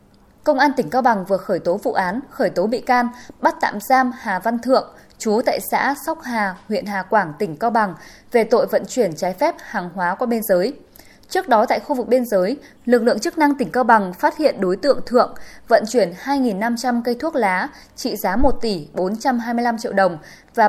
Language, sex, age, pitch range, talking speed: Vietnamese, female, 20-39, 200-265 Hz, 220 wpm